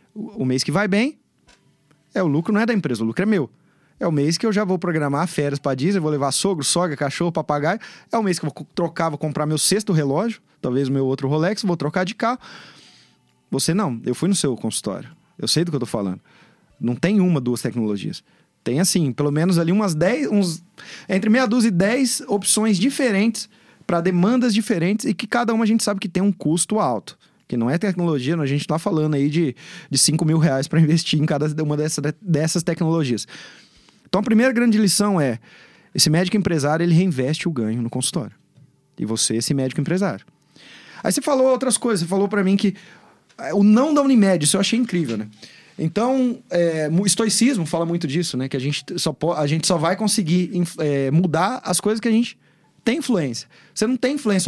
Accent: Brazilian